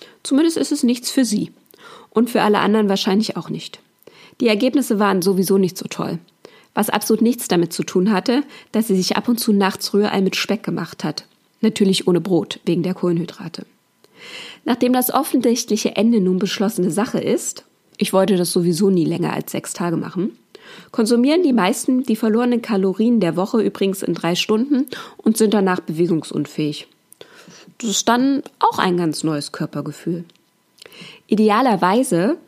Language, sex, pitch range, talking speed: German, female, 185-230 Hz, 165 wpm